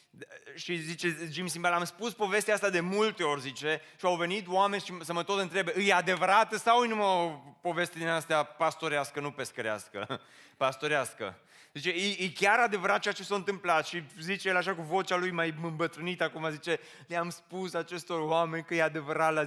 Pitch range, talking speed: 130-185 Hz, 190 wpm